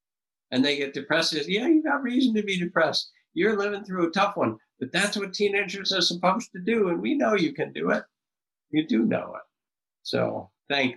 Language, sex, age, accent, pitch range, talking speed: English, male, 50-69, American, 95-130 Hz, 210 wpm